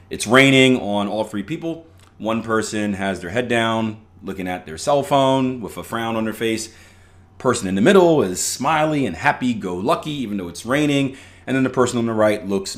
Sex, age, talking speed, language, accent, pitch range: male, 30-49, 200 wpm, English, American, 90-115 Hz